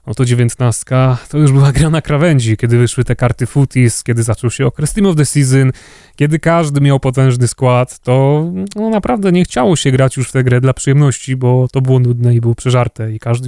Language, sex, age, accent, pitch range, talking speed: Polish, male, 20-39, native, 120-135 Hz, 215 wpm